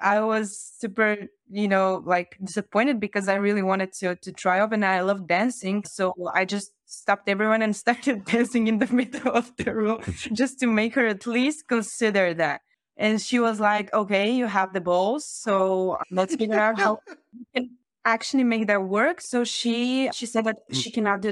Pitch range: 185-230 Hz